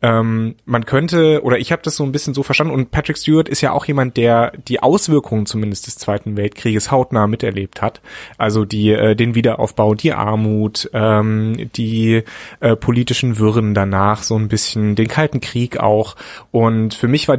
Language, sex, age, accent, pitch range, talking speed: German, male, 30-49, German, 110-140 Hz, 170 wpm